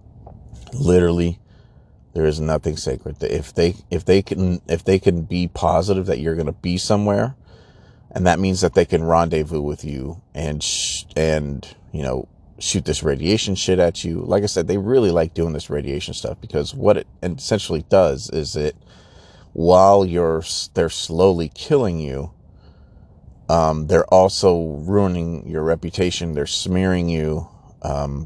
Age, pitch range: 30-49, 75-95 Hz